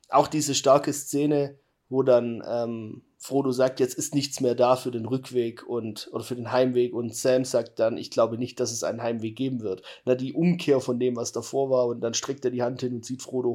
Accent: German